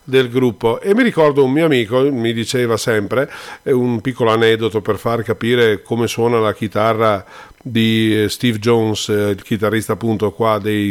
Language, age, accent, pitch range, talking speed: Italian, 40-59, native, 115-145 Hz, 160 wpm